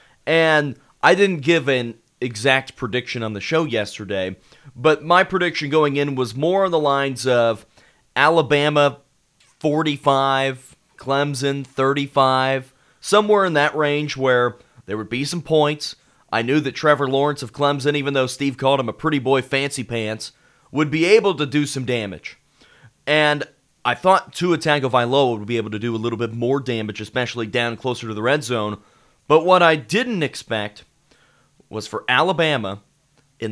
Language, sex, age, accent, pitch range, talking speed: English, male, 30-49, American, 120-150 Hz, 165 wpm